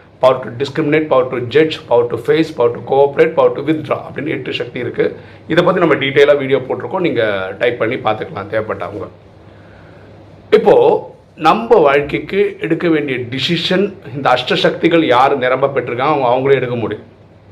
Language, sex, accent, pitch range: Tamil, male, native, 110-165 Hz